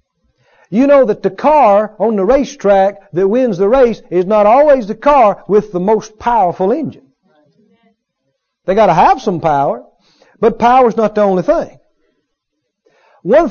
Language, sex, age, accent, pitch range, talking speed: English, male, 50-69, American, 180-245 Hz, 160 wpm